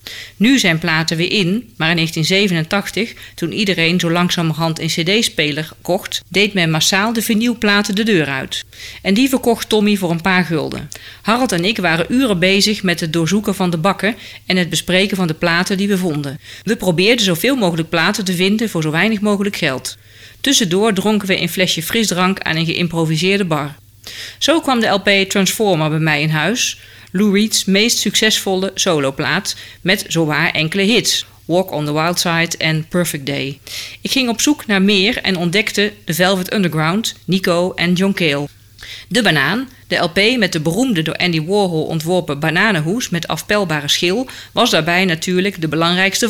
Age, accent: 40-59, Dutch